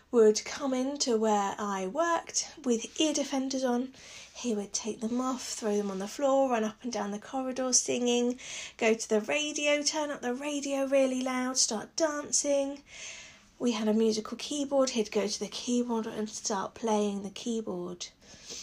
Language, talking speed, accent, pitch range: English, 175 wpm, British, 210-275 Hz